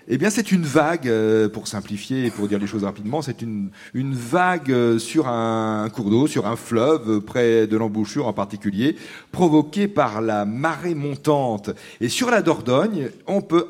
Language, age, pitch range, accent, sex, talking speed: French, 40-59, 110-155 Hz, French, male, 175 wpm